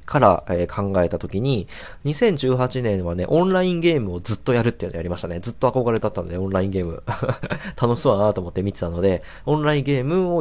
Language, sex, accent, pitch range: Japanese, male, native, 95-145 Hz